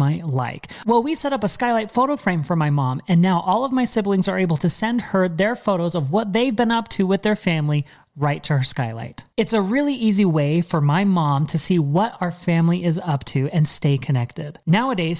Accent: American